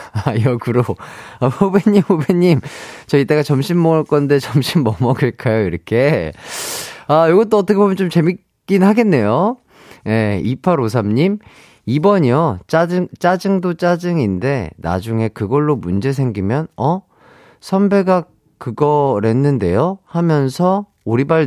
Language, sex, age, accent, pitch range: Korean, male, 30-49, native, 115-180 Hz